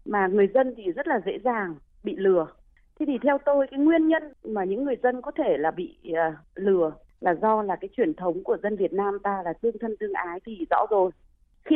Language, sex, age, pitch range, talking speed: Vietnamese, female, 20-39, 190-275 Hz, 240 wpm